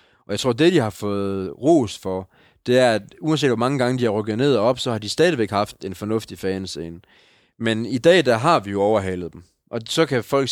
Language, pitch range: Danish, 105-145 Hz